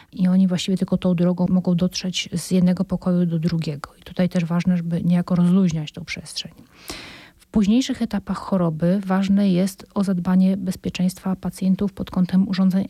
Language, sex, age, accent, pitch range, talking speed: Polish, female, 30-49, native, 180-205 Hz, 165 wpm